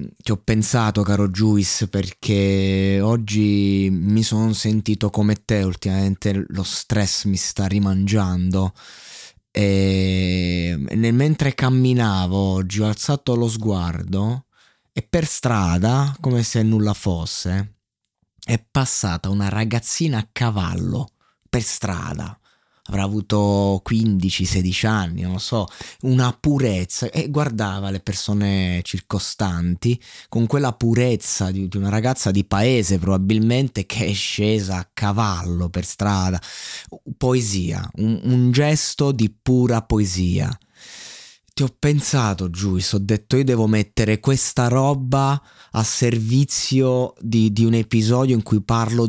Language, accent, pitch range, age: Italian, native, 95-120 Hz, 20-39